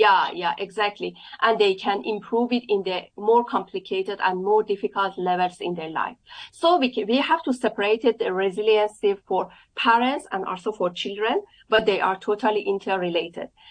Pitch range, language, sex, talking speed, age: 190-230 Hz, English, female, 170 wpm, 40-59